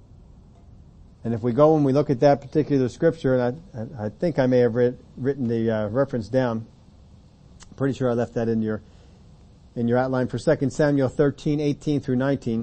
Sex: male